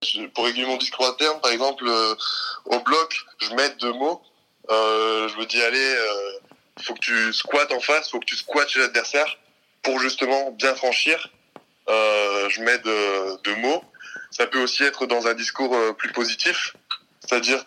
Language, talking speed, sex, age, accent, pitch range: French, 190 wpm, male, 20-39, French, 115-135 Hz